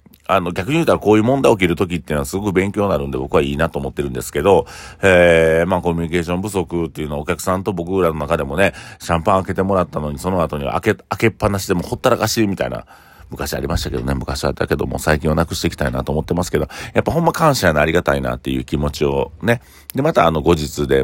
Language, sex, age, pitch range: Japanese, male, 40-59, 75-100 Hz